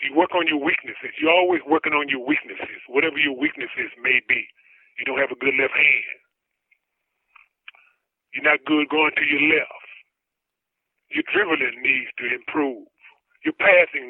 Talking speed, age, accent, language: 160 wpm, 30-49, American, English